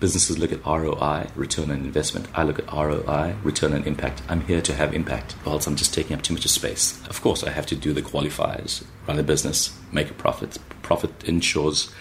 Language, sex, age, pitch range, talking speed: English, male, 30-49, 75-90 Hz, 215 wpm